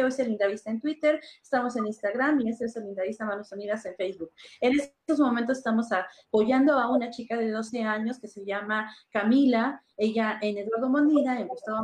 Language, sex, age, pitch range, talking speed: Spanish, female, 30-49, 200-245 Hz, 195 wpm